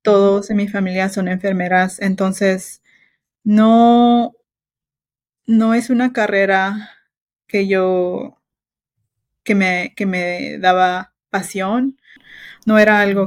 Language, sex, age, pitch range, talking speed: English, female, 20-39, 185-220 Hz, 105 wpm